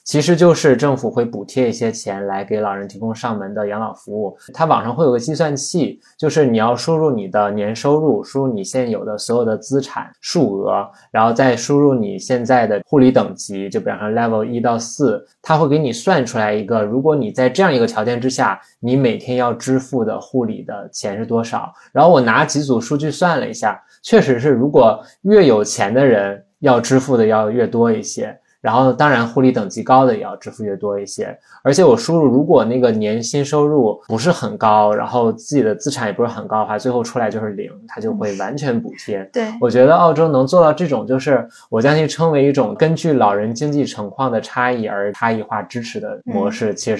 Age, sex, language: 20-39, male, Chinese